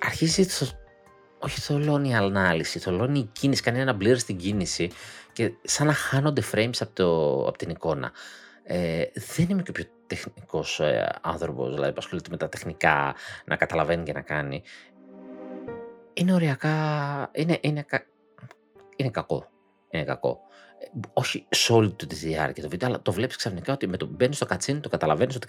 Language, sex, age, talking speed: Greek, male, 30-49, 150 wpm